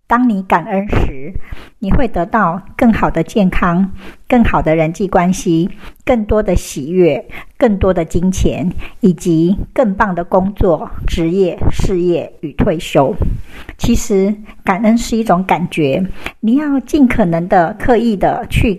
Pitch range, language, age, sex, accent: 175-225 Hz, Chinese, 60-79, male, American